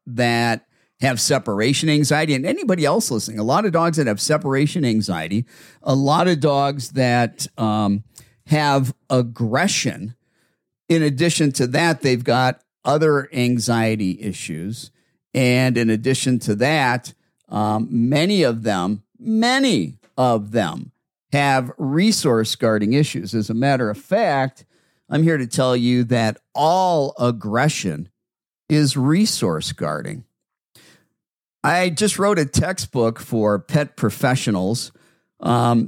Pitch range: 110-150 Hz